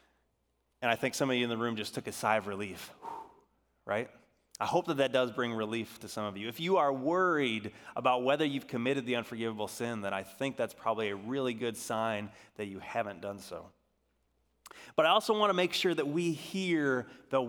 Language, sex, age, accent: English, male, 30-49, American